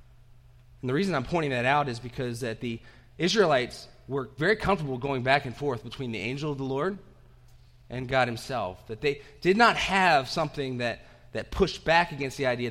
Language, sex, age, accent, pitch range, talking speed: English, male, 30-49, American, 120-155 Hz, 195 wpm